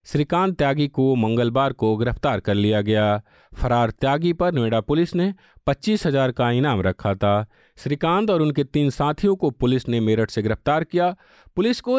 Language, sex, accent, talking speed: Hindi, male, native, 175 wpm